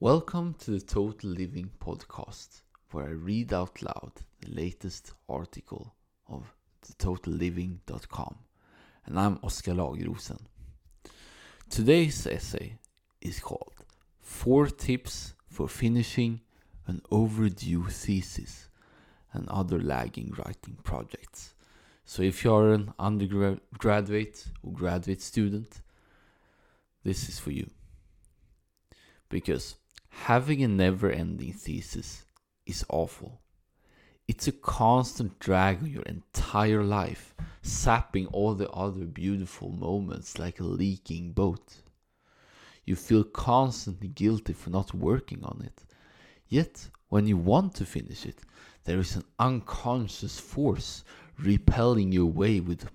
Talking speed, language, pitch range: 110 wpm, English, 85-110 Hz